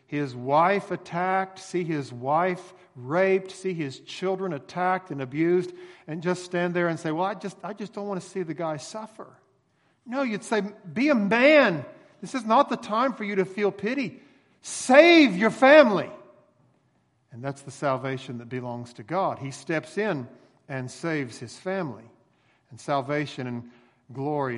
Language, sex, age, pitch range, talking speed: English, male, 50-69, 135-185 Hz, 170 wpm